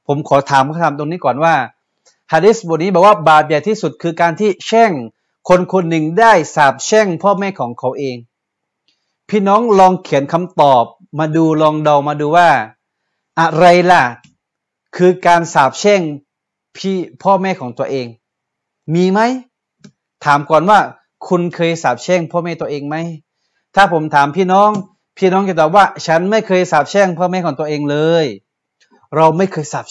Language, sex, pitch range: Thai, male, 155-200 Hz